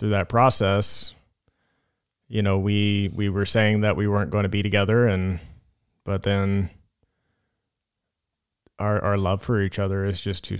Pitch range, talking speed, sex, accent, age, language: 100-110 Hz, 160 wpm, male, American, 30-49, English